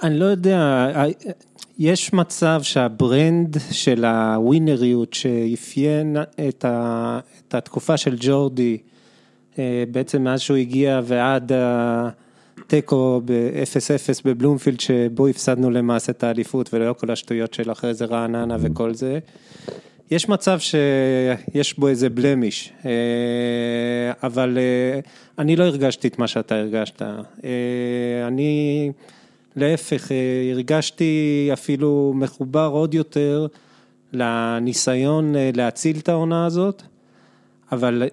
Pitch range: 120-150 Hz